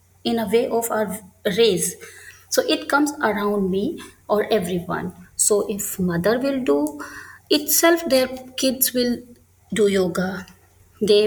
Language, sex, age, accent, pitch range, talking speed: English, female, 20-39, Indian, 190-255 Hz, 135 wpm